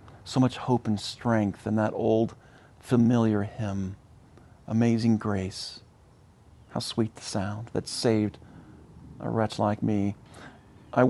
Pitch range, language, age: 110-130 Hz, English, 40-59